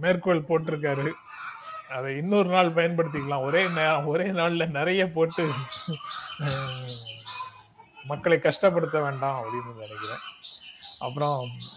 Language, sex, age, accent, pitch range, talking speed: Tamil, male, 30-49, native, 145-190 Hz, 85 wpm